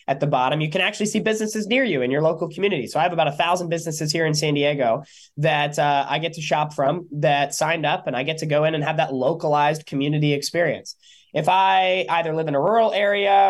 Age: 20-39